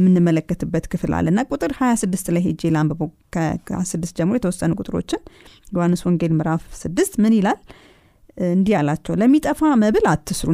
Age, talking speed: 30-49, 125 wpm